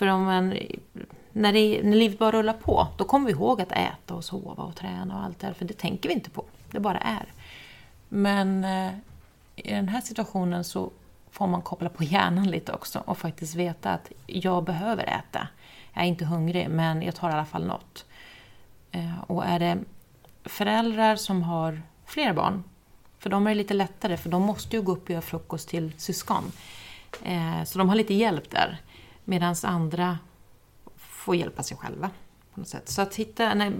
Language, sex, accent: Swedish, female, native